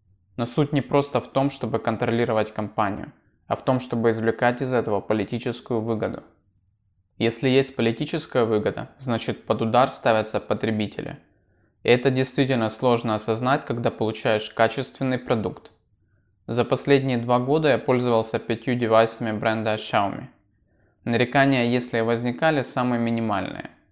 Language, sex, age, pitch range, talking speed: Russian, male, 20-39, 110-125 Hz, 130 wpm